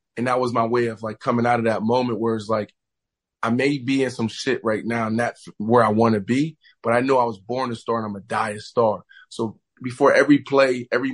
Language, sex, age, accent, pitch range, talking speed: English, male, 20-39, American, 115-135 Hz, 260 wpm